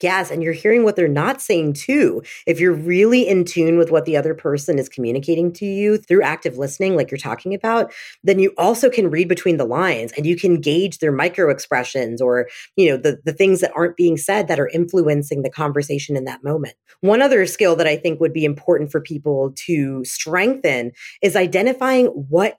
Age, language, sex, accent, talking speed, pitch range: 20-39, English, female, American, 210 wpm, 155-205 Hz